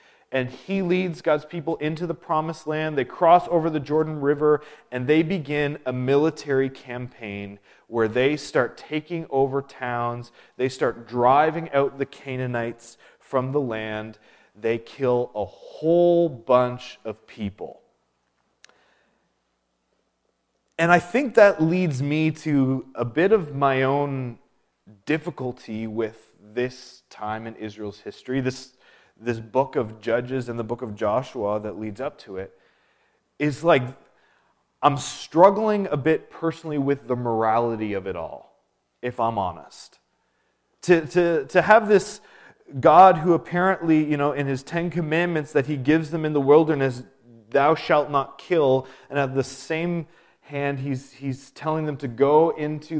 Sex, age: male, 30-49